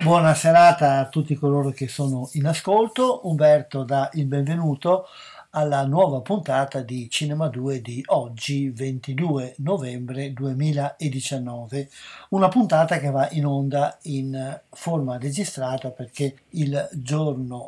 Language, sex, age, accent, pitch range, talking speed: Italian, male, 60-79, native, 130-150 Hz, 120 wpm